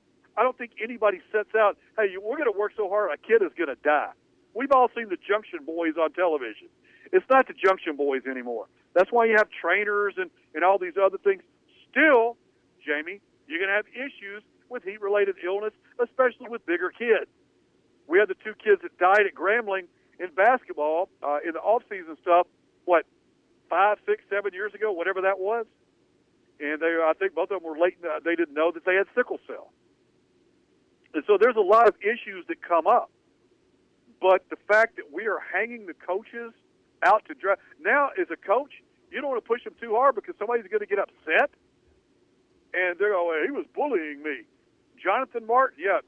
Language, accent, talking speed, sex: English, American, 195 wpm, male